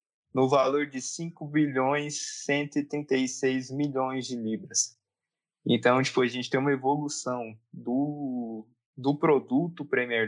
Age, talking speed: 20-39, 125 wpm